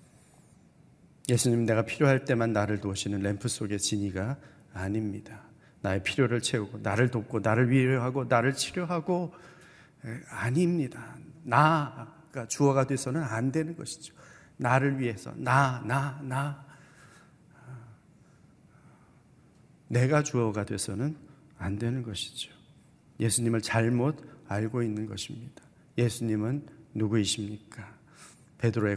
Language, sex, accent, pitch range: Korean, male, native, 115-145 Hz